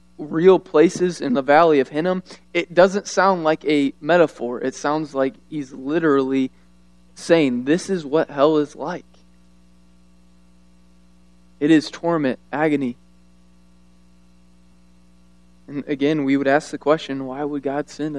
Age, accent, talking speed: 20-39, American, 130 wpm